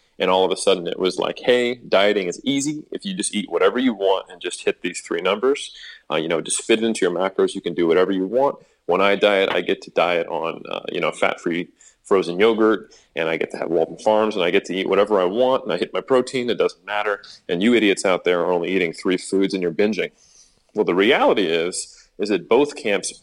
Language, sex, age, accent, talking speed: English, male, 30-49, American, 255 wpm